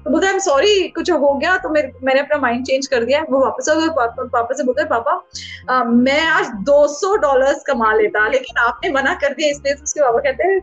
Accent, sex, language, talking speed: Indian, female, English, 300 wpm